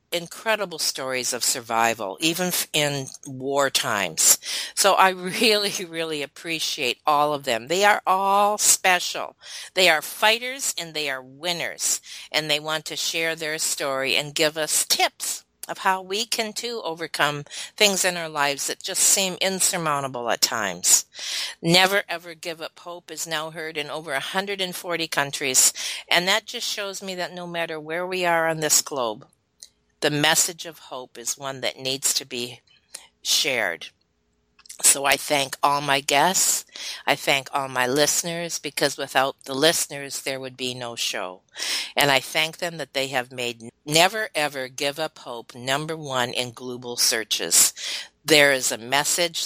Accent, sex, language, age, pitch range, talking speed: American, female, English, 50-69, 135-175 Hz, 165 wpm